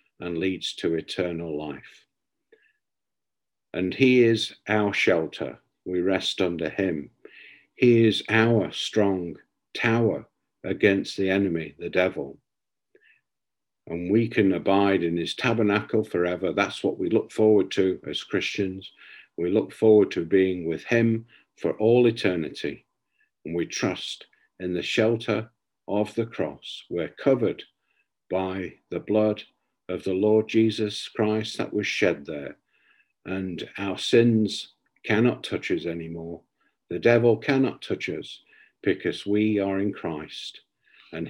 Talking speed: 130 wpm